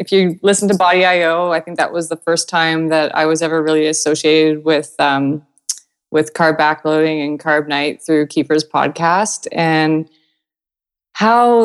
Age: 20-39